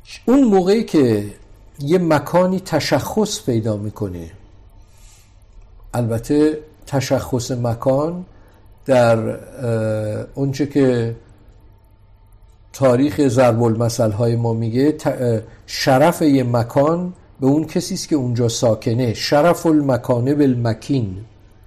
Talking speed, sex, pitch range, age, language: 85 wpm, male, 110-145 Hz, 50-69, Persian